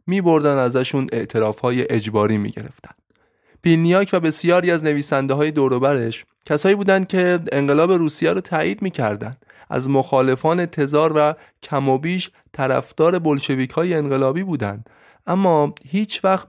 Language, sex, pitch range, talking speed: Persian, male, 130-165 Hz, 120 wpm